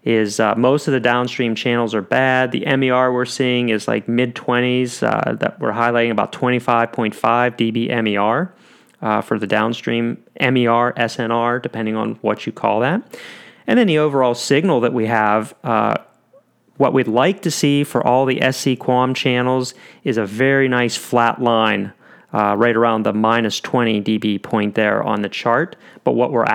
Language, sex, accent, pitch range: English, male, American, 115-130 Hz